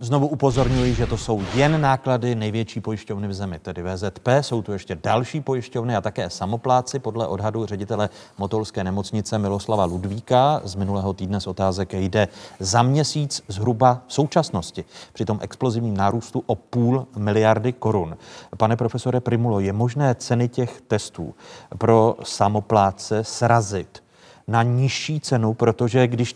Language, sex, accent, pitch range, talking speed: Czech, male, native, 95-120 Hz, 145 wpm